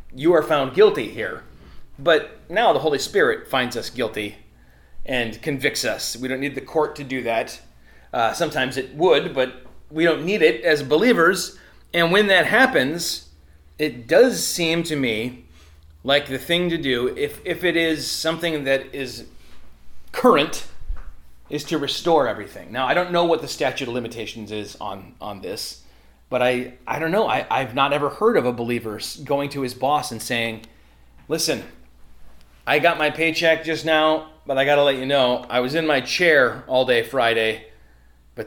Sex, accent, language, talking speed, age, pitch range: male, American, English, 180 wpm, 30-49, 110-155 Hz